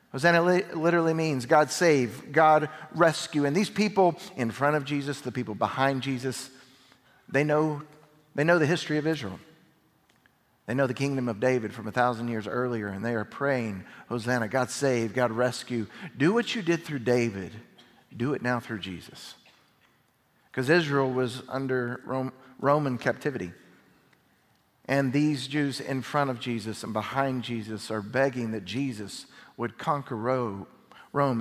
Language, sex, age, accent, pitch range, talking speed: English, male, 50-69, American, 115-150 Hz, 155 wpm